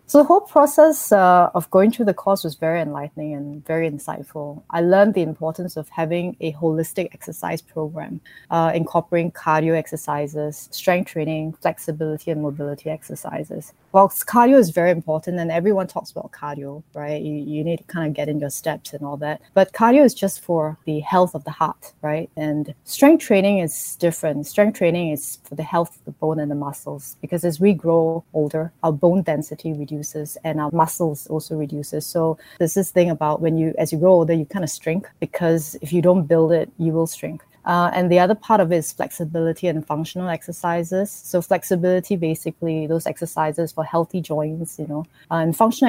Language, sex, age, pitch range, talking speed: English, female, 20-39, 155-180 Hz, 195 wpm